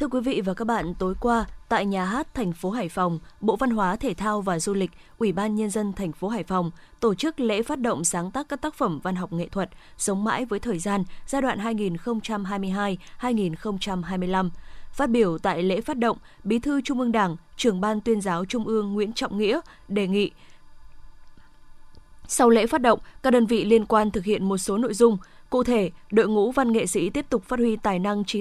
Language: Vietnamese